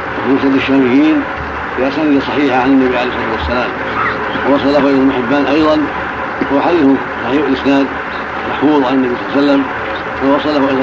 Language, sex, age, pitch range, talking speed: Arabic, male, 70-89, 135-155 Hz, 135 wpm